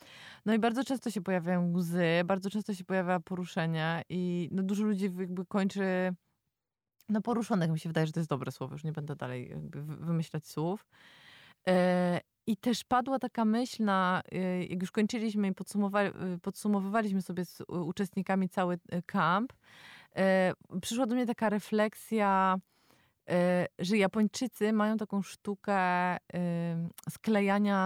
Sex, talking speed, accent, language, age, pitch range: female, 135 wpm, native, Polish, 20-39, 175-205 Hz